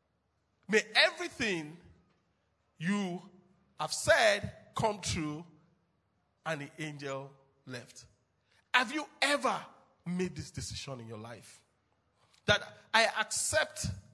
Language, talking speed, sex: English, 100 wpm, male